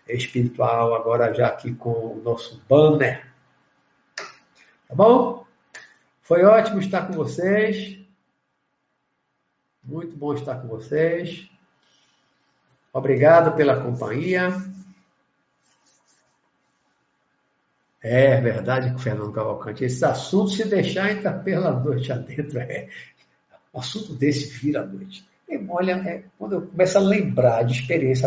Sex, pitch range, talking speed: male, 120-175 Hz, 115 wpm